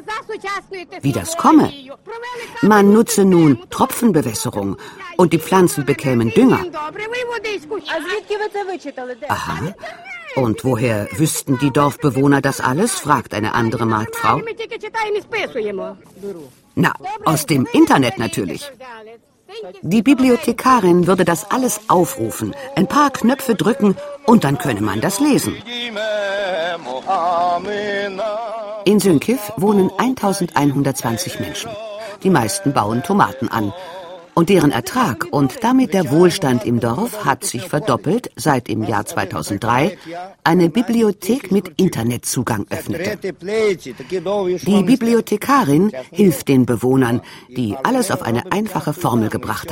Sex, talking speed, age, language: female, 105 wpm, 50-69, German